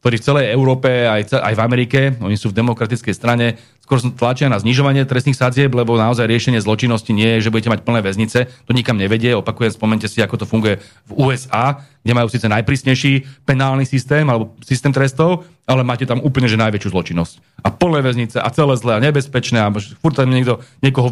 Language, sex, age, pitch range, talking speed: Slovak, male, 40-59, 115-135 Hz, 190 wpm